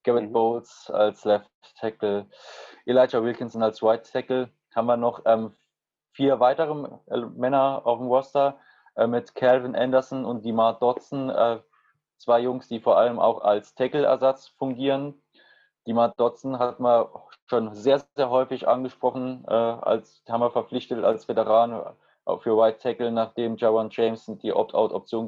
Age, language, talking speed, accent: 20-39, English, 145 wpm, German